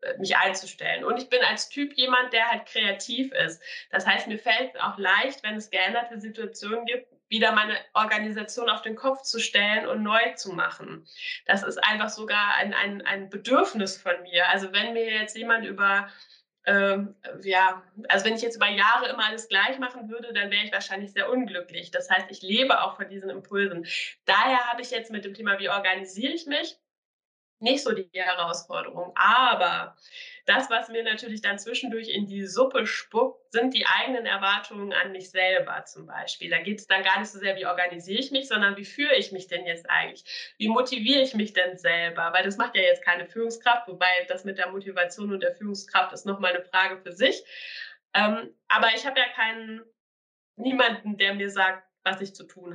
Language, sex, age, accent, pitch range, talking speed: German, female, 20-39, German, 195-245 Hz, 200 wpm